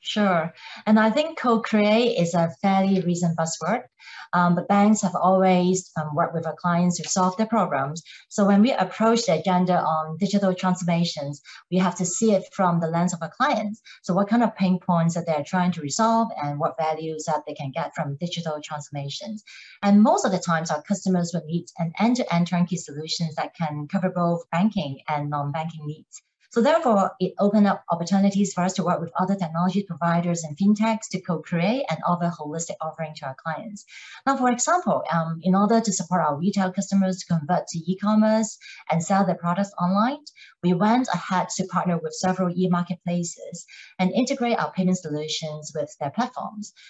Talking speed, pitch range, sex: 190 wpm, 165-205 Hz, female